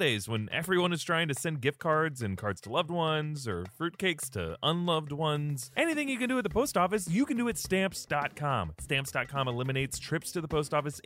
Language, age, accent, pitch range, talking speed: English, 30-49, American, 130-185 Hz, 205 wpm